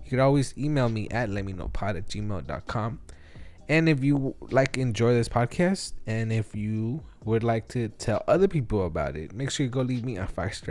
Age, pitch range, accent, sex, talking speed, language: 20-39, 105-135 Hz, American, male, 205 wpm, English